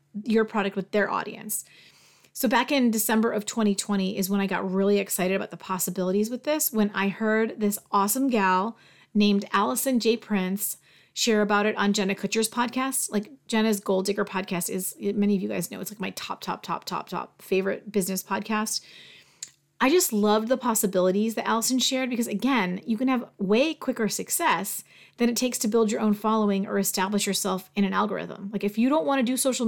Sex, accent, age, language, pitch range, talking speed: female, American, 30-49, English, 195-225 Hz, 200 wpm